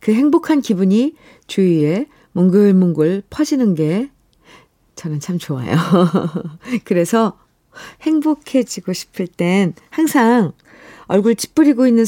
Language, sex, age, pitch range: Korean, female, 50-69, 165-235 Hz